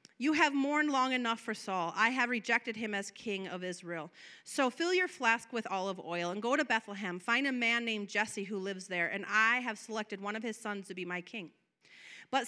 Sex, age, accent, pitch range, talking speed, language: female, 30-49, American, 215-280 Hz, 225 wpm, English